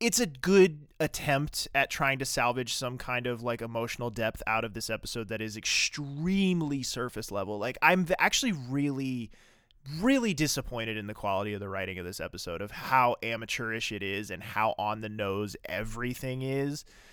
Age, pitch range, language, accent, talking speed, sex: 20-39, 115-155 Hz, English, American, 175 wpm, male